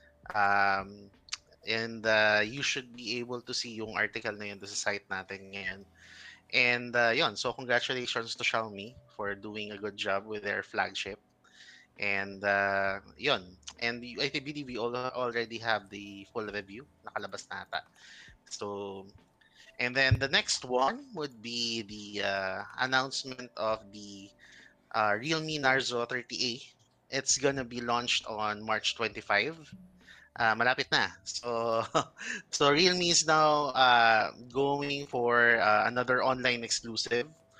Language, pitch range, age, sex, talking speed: English, 105-130 Hz, 20-39, male, 140 wpm